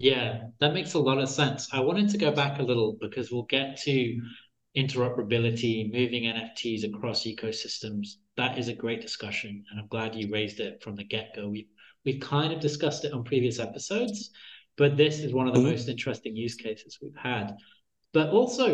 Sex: male